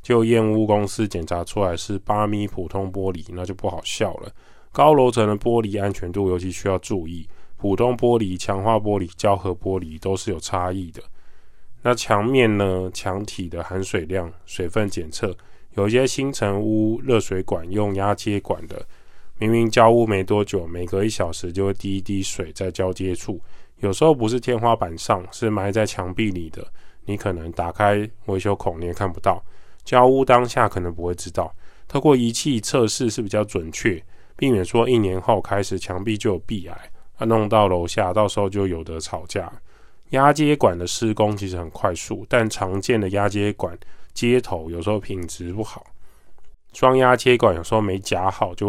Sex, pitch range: male, 95-110 Hz